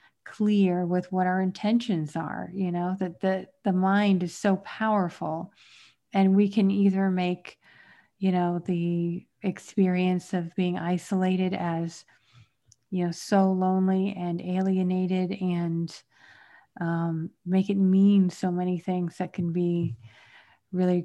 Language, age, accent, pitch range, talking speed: English, 40-59, American, 175-200 Hz, 130 wpm